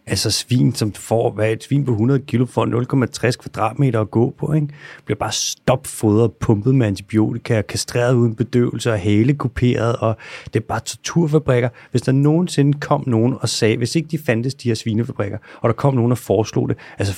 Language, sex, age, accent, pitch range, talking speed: Danish, male, 30-49, native, 110-140 Hz, 200 wpm